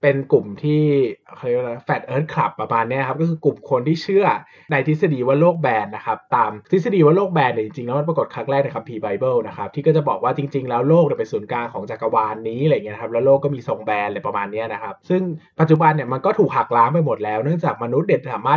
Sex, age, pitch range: male, 20-39, 135-185 Hz